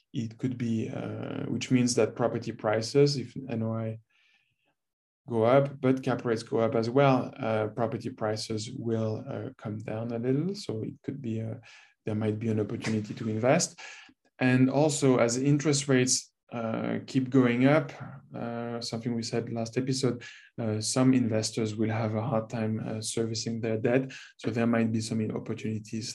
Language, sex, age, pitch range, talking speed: English, male, 20-39, 110-130 Hz, 170 wpm